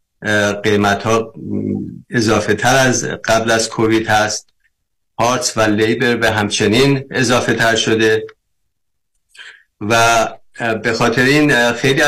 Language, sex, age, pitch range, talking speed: Persian, male, 50-69, 105-120 Hz, 110 wpm